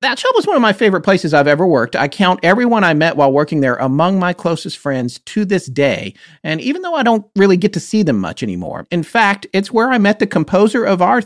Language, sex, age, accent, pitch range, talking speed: English, male, 40-59, American, 125-190 Hz, 255 wpm